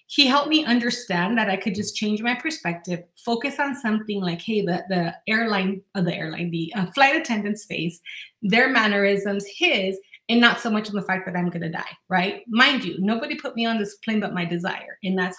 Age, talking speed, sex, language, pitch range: 30-49, 215 wpm, female, English, 190-235 Hz